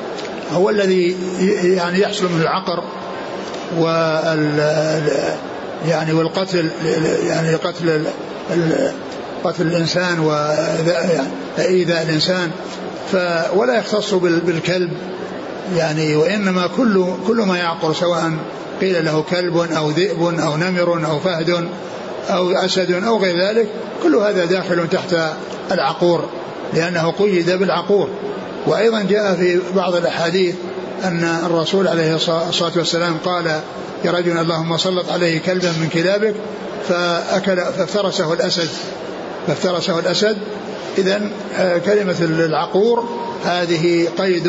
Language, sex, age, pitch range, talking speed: Arabic, male, 60-79, 165-190 Hz, 110 wpm